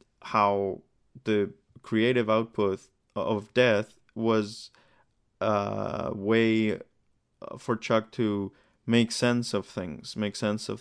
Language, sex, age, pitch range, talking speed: English, male, 20-39, 100-115 Hz, 105 wpm